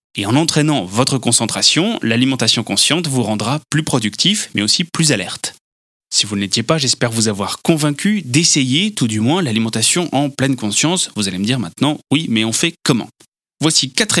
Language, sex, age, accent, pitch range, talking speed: French, male, 20-39, French, 110-150 Hz, 180 wpm